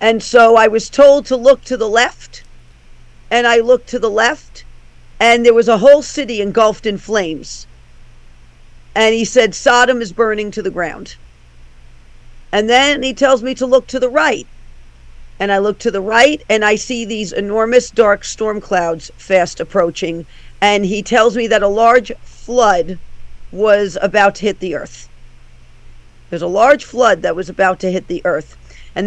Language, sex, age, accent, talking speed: English, female, 50-69, American, 180 wpm